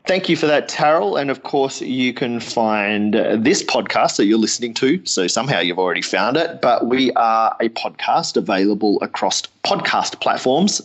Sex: male